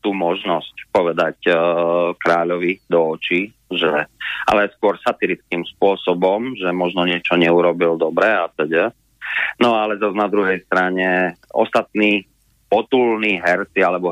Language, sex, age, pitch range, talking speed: Slovak, male, 30-49, 85-120 Hz, 125 wpm